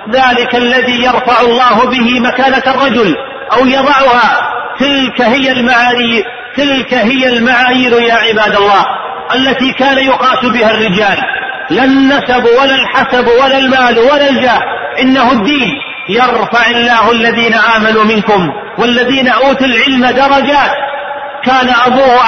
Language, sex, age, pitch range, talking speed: Arabic, male, 40-59, 230-260 Hz, 120 wpm